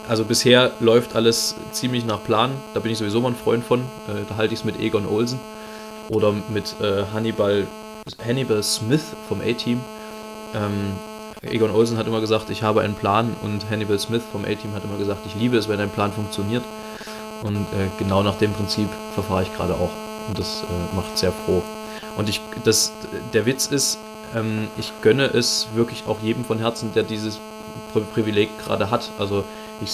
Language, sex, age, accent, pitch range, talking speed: German, male, 20-39, German, 105-115 Hz, 185 wpm